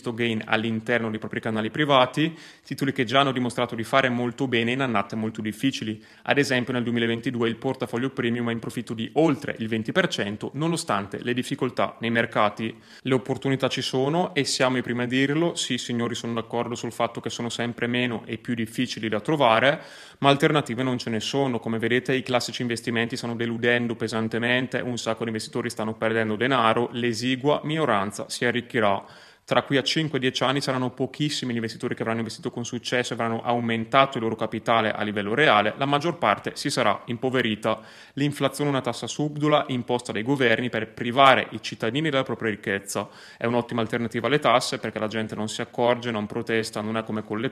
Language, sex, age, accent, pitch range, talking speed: Italian, male, 30-49, native, 115-130 Hz, 190 wpm